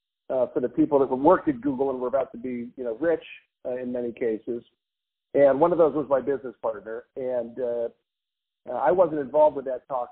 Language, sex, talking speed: English, male, 215 wpm